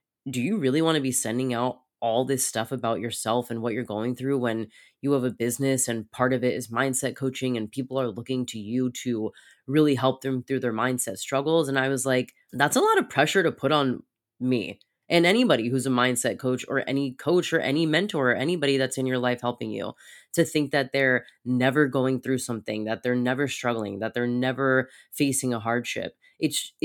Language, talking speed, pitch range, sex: English, 215 wpm, 120-150 Hz, female